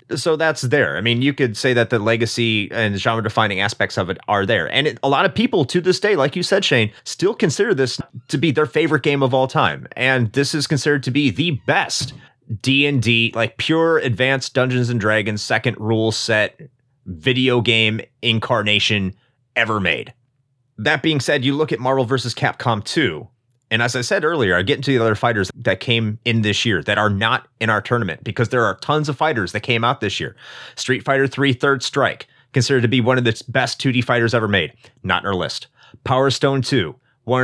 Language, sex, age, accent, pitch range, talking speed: English, male, 30-49, American, 115-140 Hz, 210 wpm